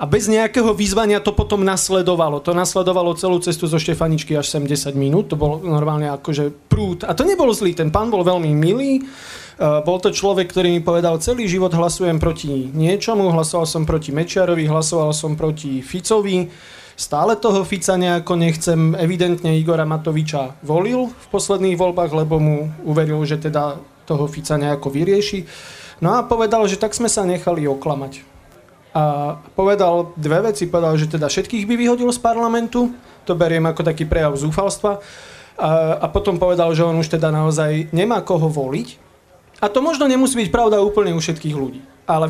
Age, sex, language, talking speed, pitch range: 30-49, male, Slovak, 175 wpm, 155-195 Hz